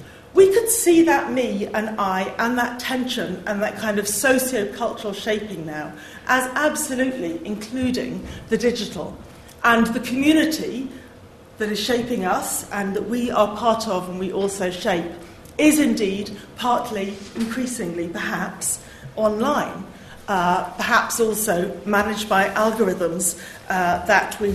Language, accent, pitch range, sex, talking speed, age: English, British, 180-225 Hz, female, 130 wpm, 40-59